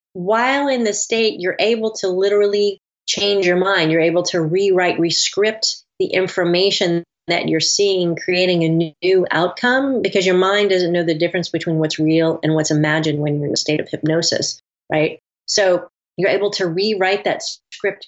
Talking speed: 175 wpm